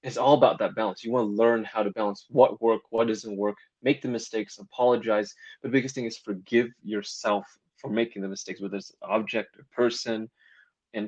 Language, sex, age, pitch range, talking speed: English, male, 20-39, 105-125 Hz, 200 wpm